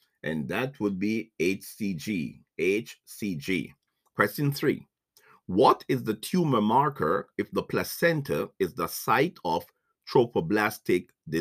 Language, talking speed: English, 110 wpm